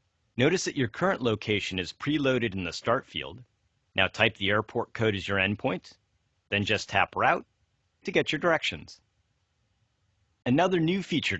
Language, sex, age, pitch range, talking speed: Hungarian, male, 40-59, 100-130 Hz, 160 wpm